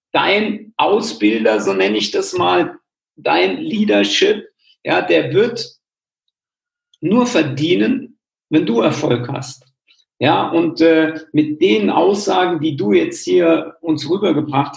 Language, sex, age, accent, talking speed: German, male, 50-69, German, 115 wpm